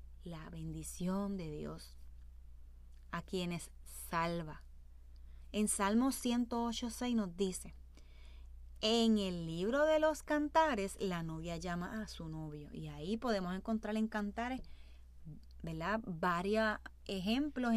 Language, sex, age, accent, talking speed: Spanish, female, 20-39, American, 110 wpm